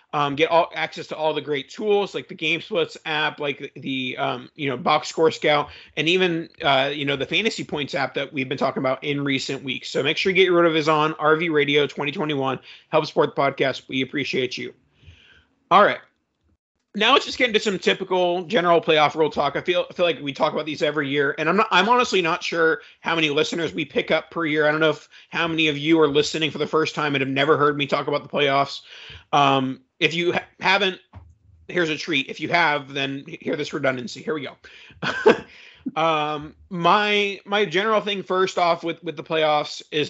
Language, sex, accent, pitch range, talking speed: English, male, American, 145-175 Hz, 225 wpm